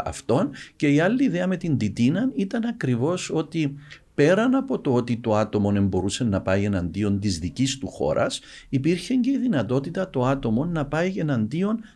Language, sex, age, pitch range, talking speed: Greek, male, 50-69, 105-155 Hz, 165 wpm